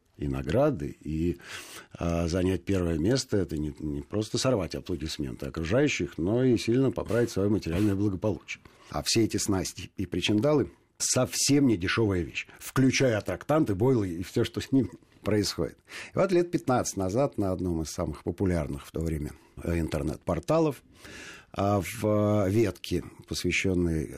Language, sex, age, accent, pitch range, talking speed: Russian, male, 50-69, native, 85-120 Hz, 145 wpm